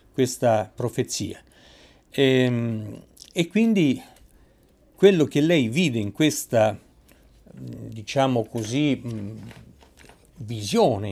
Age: 50-69